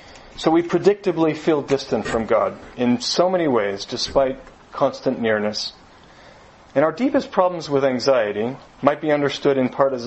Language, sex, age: English, male, 40-59